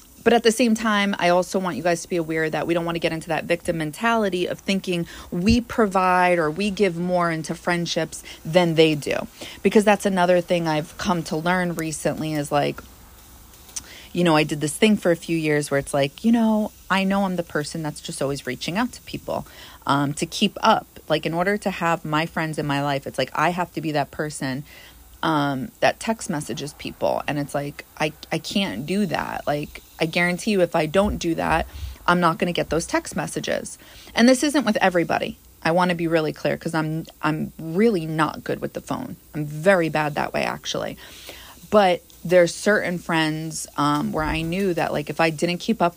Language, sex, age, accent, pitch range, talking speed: English, female, 30-49, American, 155-195 Hz, 220 wpm